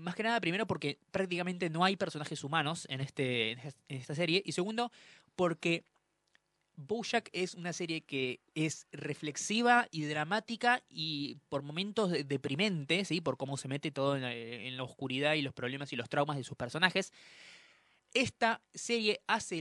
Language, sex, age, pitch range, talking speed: Spanish, male, 20-39, 140-190 Hz, 165 wpm